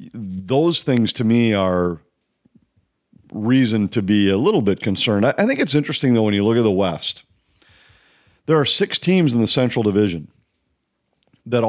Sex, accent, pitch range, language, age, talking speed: male, American, 105-135 Hz, English, 40-59, 165 wpm